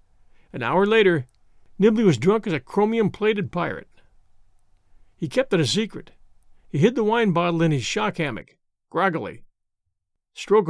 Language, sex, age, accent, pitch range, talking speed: English, male, 50-69, American, 145-210 Hz, 145 wpm